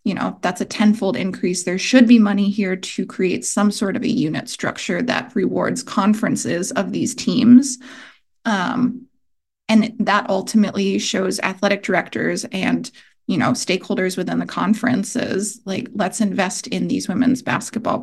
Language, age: English, 20-39